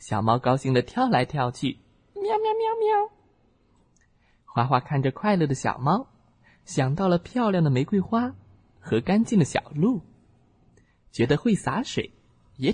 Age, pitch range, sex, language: 20-39, 110-185 Hz, male, Chinese